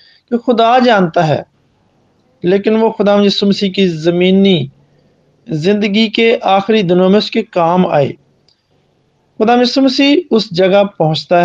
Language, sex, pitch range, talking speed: Hindi, male, 175-225 Hz, 100 wpm